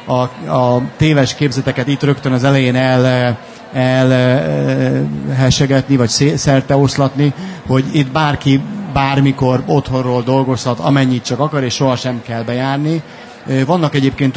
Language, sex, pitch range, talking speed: Hungarian, male, 125-140 Hz, 115 wpm